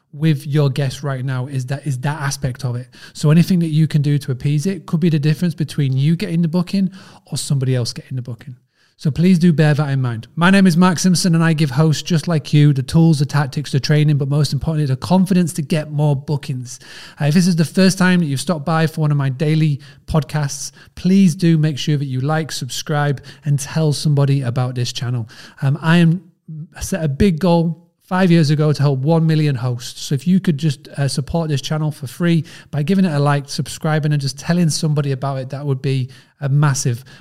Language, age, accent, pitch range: English, 30-49, British, 140-165 Hz